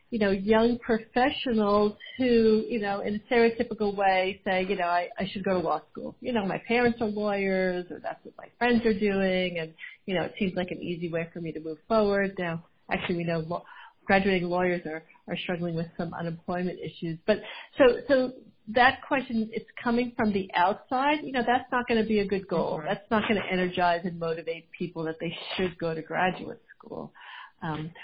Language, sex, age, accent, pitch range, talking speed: English, female, 50-69, American, 180-230 Hz, 210 wpm